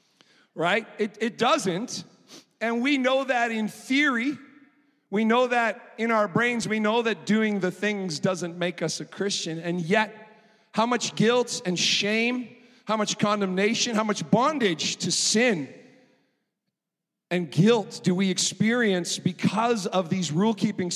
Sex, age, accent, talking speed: male, 40-59, American, 150 wpm